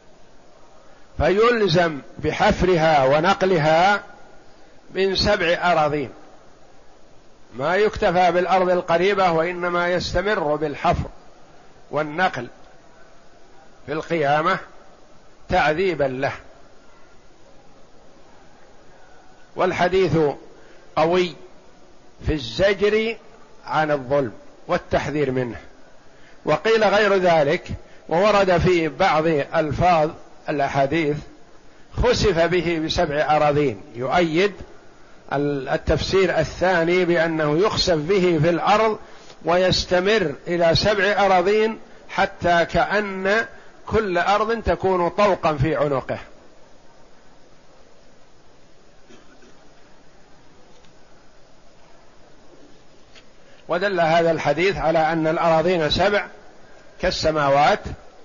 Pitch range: 155-190 Hz